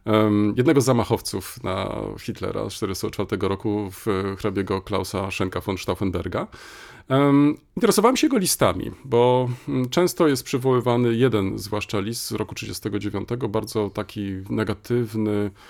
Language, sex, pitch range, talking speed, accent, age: Polish, male, 100-145 Hz, 120 wpm, native, 40-59